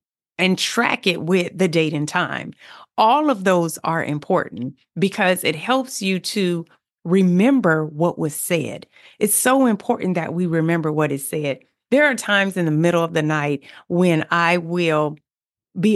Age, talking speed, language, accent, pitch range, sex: 40-59, 165 wpm, English, American, 160-215 Hz, female